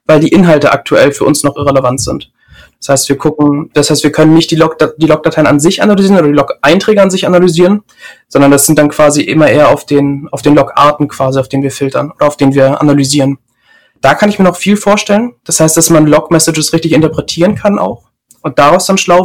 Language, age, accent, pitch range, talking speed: German, 20-39, German, 140-165 Hz, 220 wpm